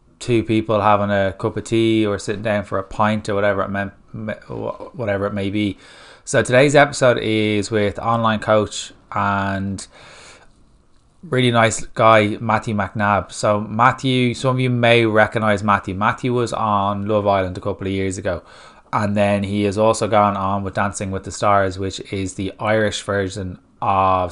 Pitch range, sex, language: 100-110 Hz, male, English